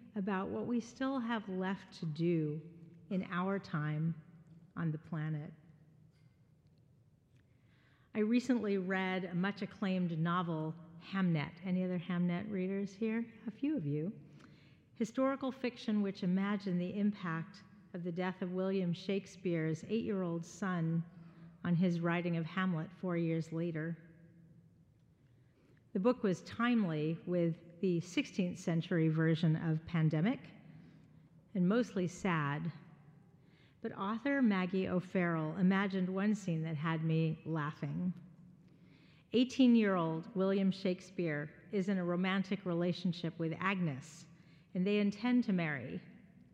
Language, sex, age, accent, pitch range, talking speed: English, female, 40-59, American, 160-200 Hz, 120 wpm